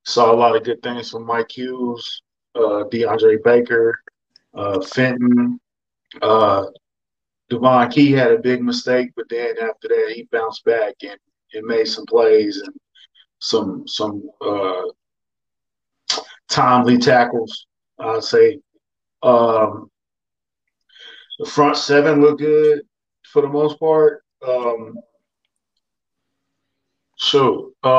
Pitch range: 120-145 Hz